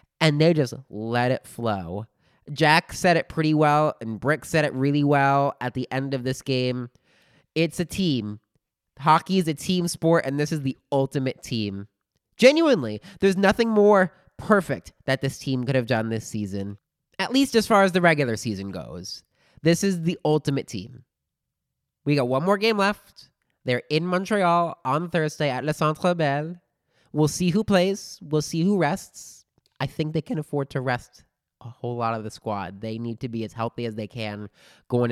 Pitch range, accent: 110-155 Hz, American